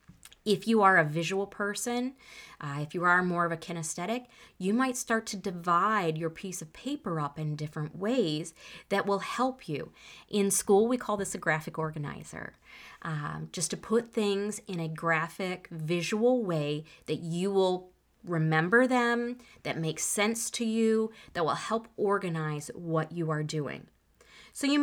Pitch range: 165-215 Hz